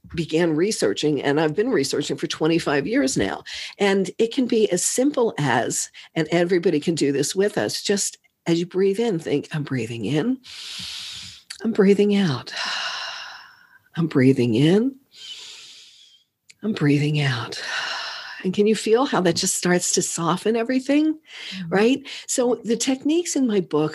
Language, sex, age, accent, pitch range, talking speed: English, female, 50-69, American, 155-215 Hz, 150 wpm